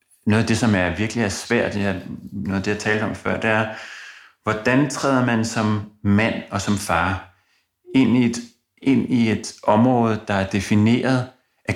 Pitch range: 90-110 Hz